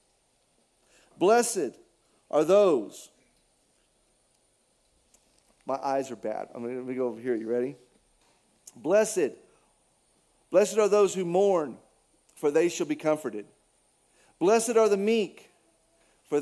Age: 40-59